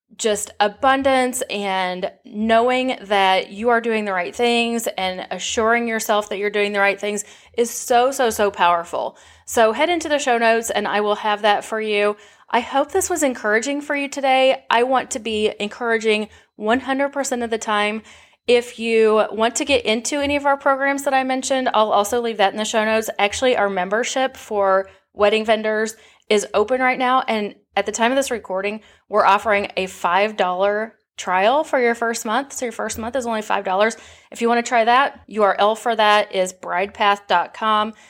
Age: 30-49